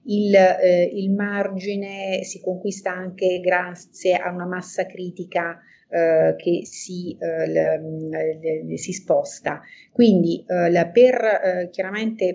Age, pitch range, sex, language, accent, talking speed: 40-59, 175-210 Hz, female, Italian, native, 105 wpm